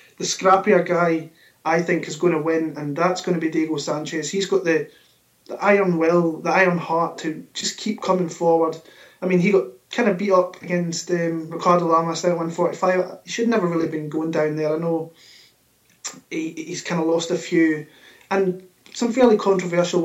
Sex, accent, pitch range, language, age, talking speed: male, British, 160-185 Hz, English, 20-39, 190 wpm